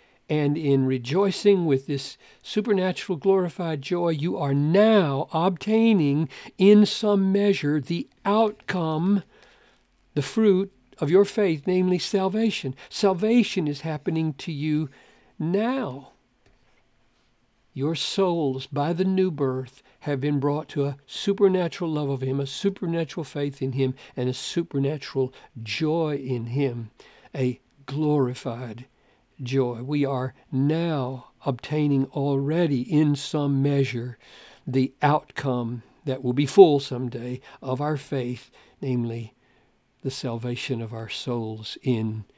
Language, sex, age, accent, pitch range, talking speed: English, male, 60-79, American, 125-160 Hz, 120 wpm